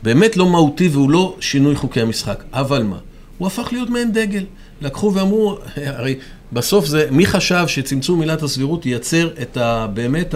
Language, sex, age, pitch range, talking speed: Hebrew, male, 40-59, 115-165 Hz, 170 wpm